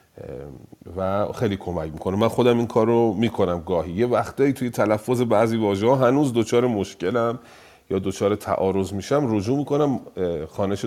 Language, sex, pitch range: Persian, male, 95-120 Hz